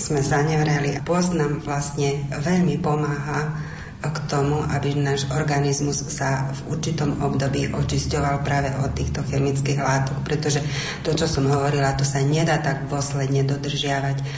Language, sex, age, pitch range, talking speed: Slovak, female, 30-49, 140-155 Hz, 140 wpm